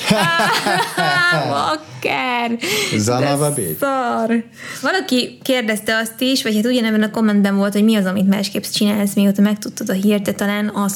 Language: Hungarian